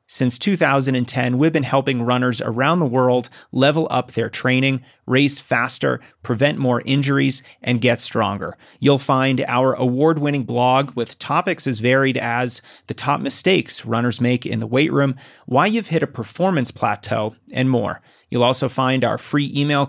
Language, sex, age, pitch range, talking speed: English, male, 30-49, 120-140 Hz, 165 wpm